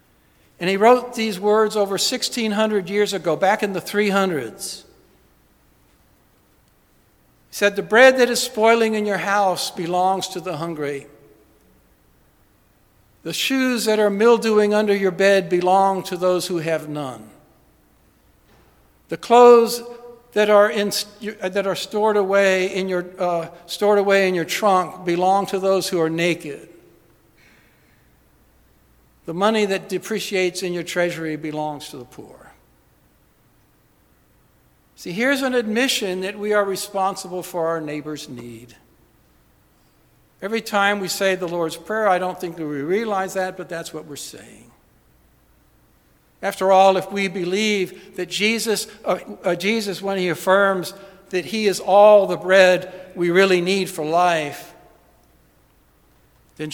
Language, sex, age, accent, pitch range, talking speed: English, male, 60-79, American, 165-205 Hz, 135 wpm